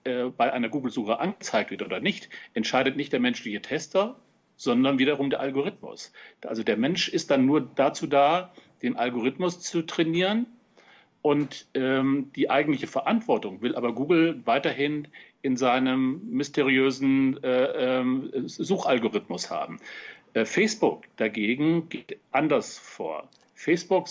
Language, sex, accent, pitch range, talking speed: German, male, German, 135-185 Hz, 125 wpm